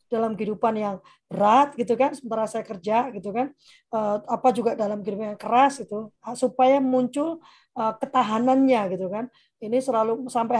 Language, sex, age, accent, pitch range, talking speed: Indonesian, female, 20-39, native, 220-270 Hz, 145 wpm